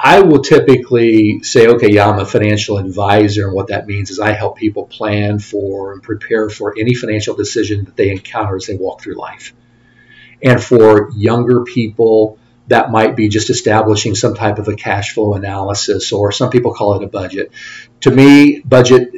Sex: male